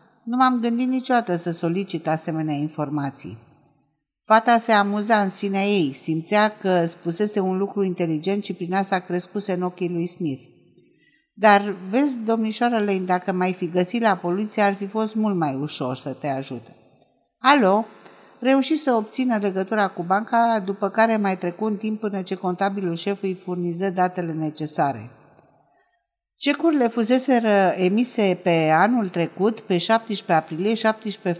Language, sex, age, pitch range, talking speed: Romanian, female, 50-69, 170-225 Hz, 145 wpm